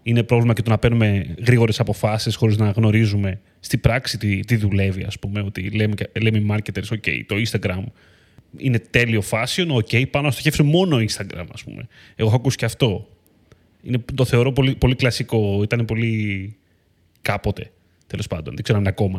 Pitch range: 105-135 Hz